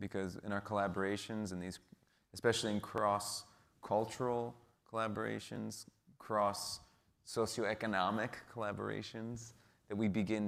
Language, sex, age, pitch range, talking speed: English, male, 20-39, 95-110 Hz, 90 wpm